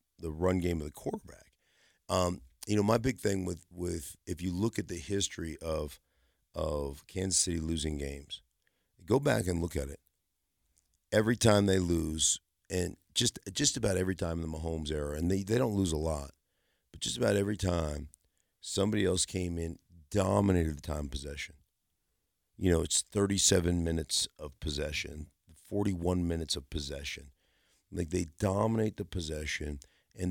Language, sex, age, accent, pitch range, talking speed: English, male, 50-69, American, 75-95 Hz, 165 wpm